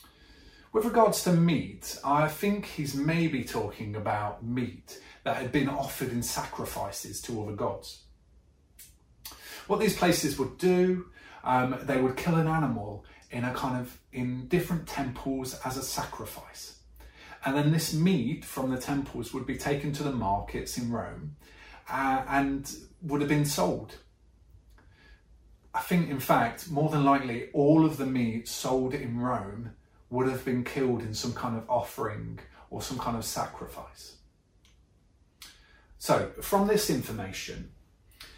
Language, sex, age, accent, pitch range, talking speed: English, male, 30-49, British, 105-150 Hz, 145 wpm